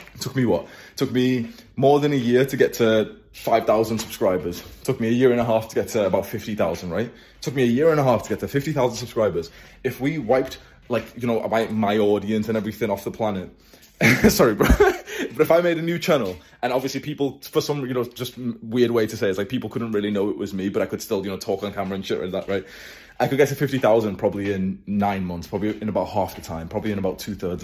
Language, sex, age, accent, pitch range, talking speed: English, male, 20-39, British, 105-125 Hz, 250 wpm